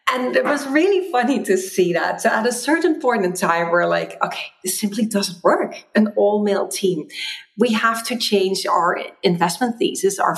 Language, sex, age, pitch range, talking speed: English, female, 40-59, 185-240 Hz, 195 wpm